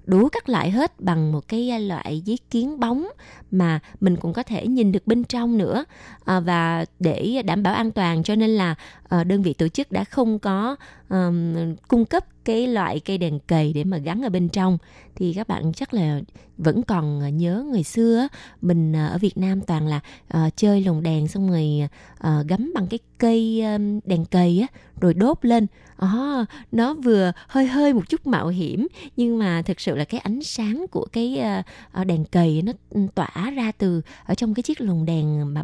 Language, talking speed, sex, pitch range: Vietnamese, 190 wpm, female, 170-235 Hz